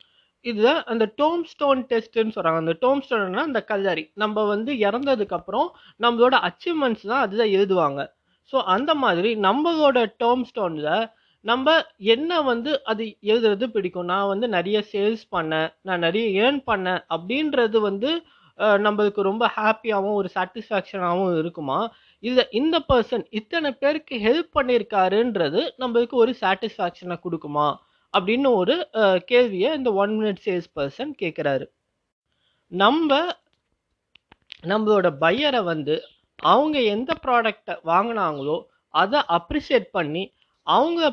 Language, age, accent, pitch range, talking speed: Tamil, 20-39, native, 190-265 Hz, 115 wpm